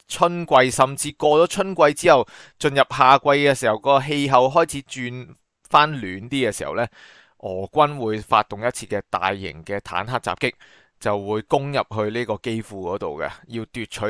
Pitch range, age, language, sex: 105-140 Hz, 30-49, Chinese, male